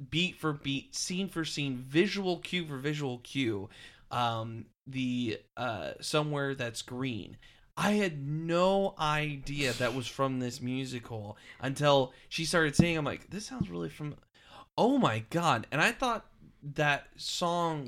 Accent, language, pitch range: American, English, 115-150 Hz